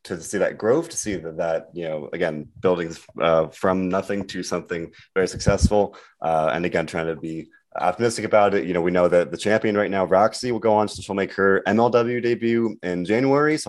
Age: 30-49